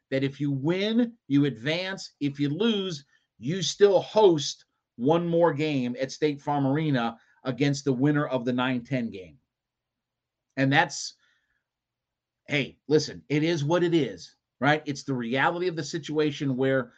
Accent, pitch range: American, 135-185 Hz